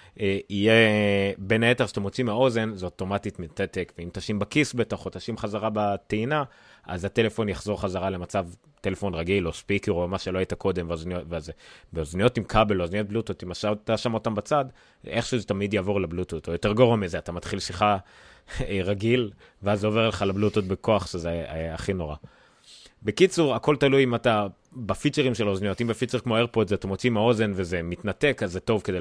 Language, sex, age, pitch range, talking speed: Hebrew, male, 30-49, 90-110 Hz, 185 wpm